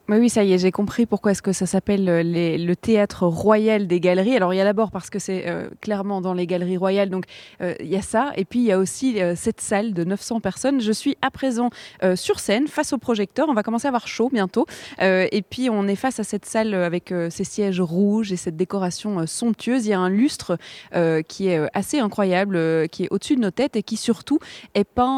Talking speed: 255 wpm